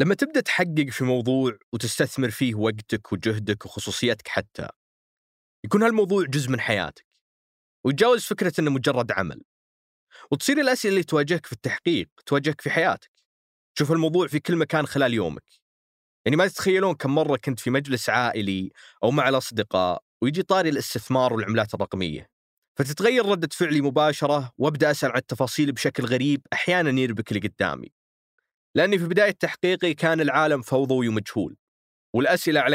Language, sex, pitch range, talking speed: Arabic, male, 120-180 Hz, 140 wpm